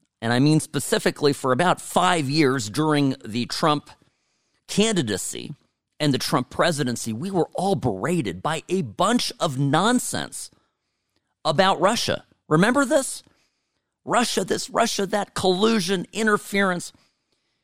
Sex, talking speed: male, 120 wpm